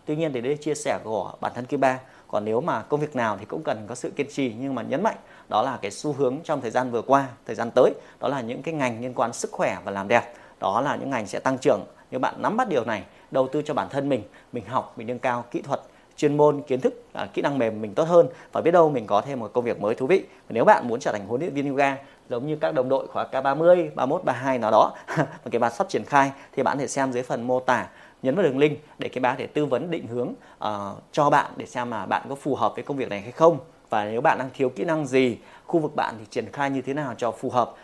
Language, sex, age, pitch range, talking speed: Vietnamese, male, 20-39, 125-150 Hz, 295 wpm